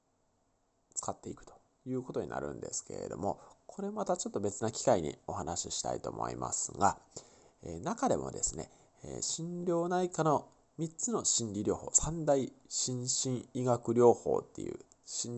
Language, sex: Japanese, male